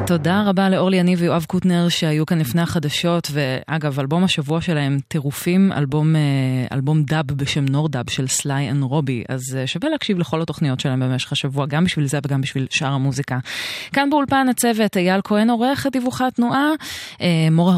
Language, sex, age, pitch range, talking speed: Hebrew, female, 20-39, 145-185 Hz, 160 wpm